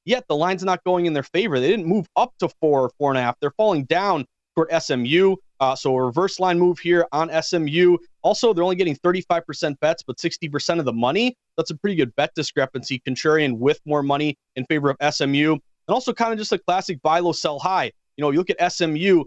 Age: 30-49